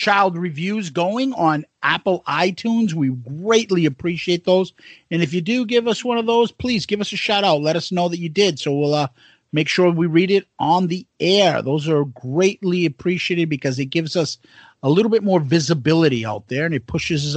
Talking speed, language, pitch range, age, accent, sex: 210 wpm, English, 150-200 Hz, 50-69, American, male